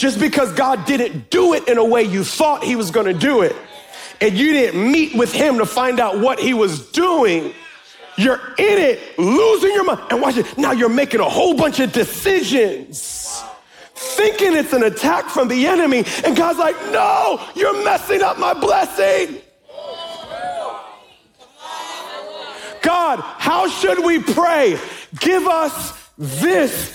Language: English